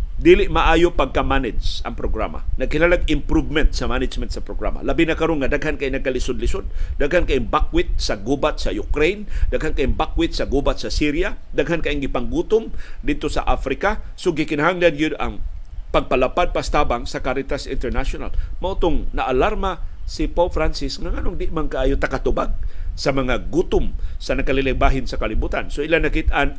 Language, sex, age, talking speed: Filipino, male, 50-69, 155 wpm